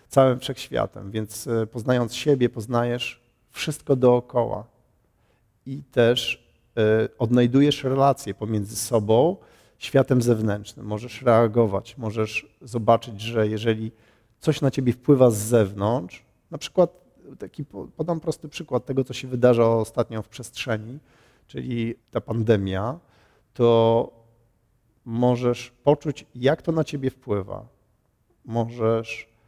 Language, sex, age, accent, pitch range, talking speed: Polish, male, 40-59, native, 110-135 Hz, 110 wpm